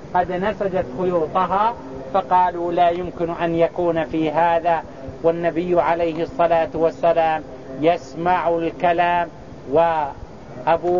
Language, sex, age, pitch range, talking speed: English, male, 50-69, 165-205 Hz, 95 wpm